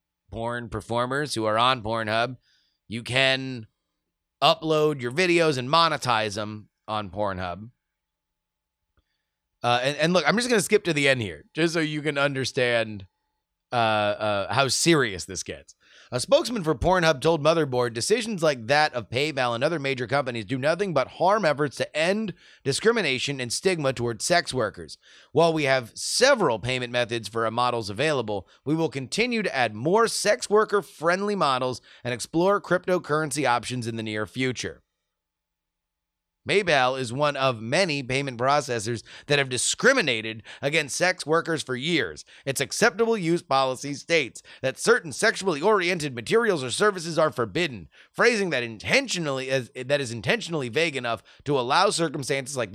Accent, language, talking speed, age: American, English, 155 wpm, 30-49